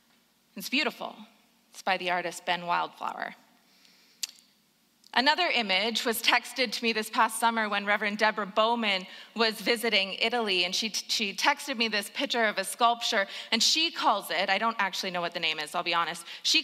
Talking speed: 180 wpm